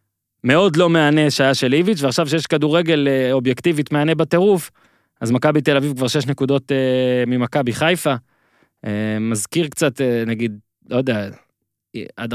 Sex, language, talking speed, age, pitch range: male, Hebrew, 130 wpm, 20-39, 115-140 Hz